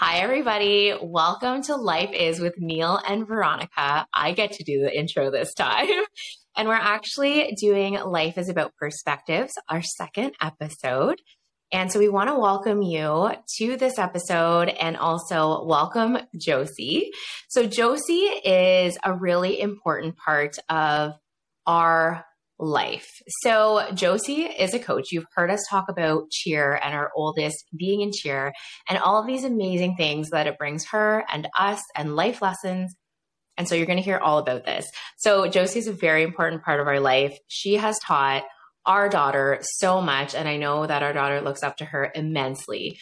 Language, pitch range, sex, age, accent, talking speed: English, 155-220 Hz, female, 20-39, American, 170 wpm